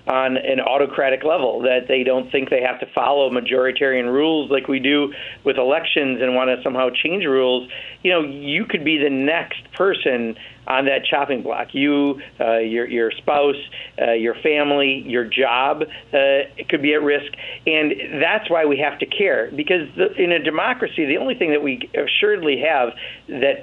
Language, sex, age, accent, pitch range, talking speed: English, male, 50-69, American, 130-155 Hz, 180 wpm